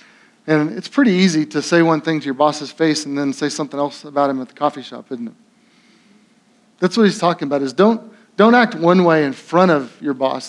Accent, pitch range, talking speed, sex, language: American, 155-215 Hz, 235 wpm, male, English